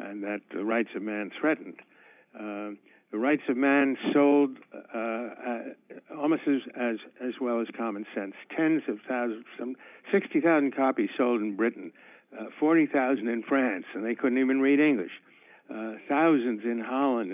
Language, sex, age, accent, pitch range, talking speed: English, male, 60-79, American, 115-140 Hz, 155 wpm